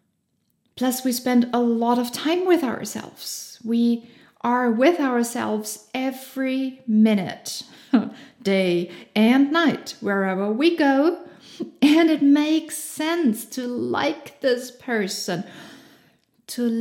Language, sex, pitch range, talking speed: English, female, 215-280 Hz, 105 wpm